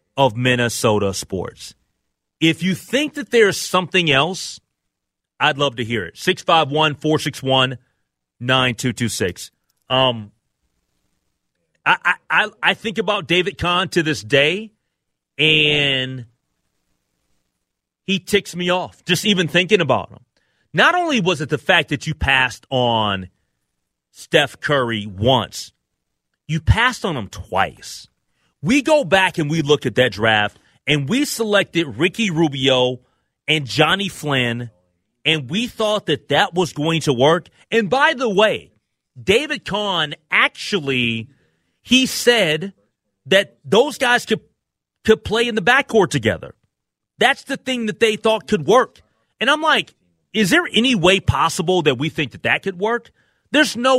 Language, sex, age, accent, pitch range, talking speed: English, male, 30-49, American, 125-210 Hz, 140 wpm